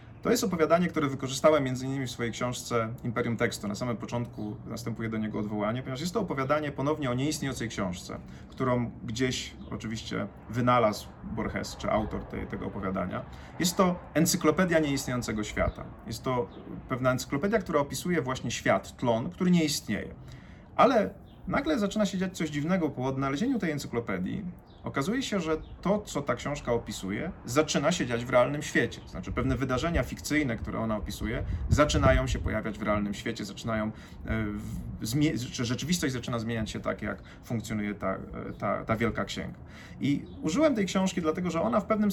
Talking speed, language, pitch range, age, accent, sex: 160 wpm, Polish, 110-150 Hz, 30-49, native, male